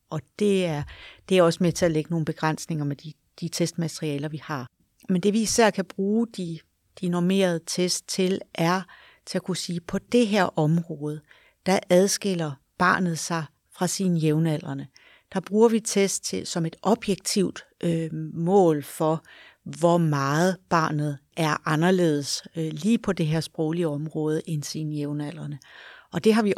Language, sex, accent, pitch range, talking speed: Danish, female, native, 155-185 Hz, 170 wpm